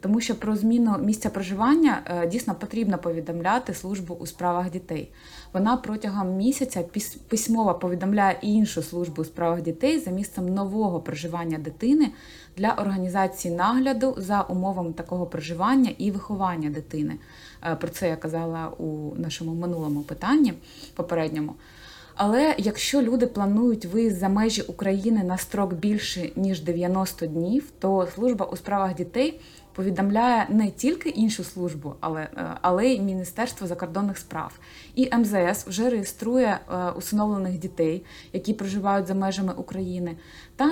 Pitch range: 175-220 Hz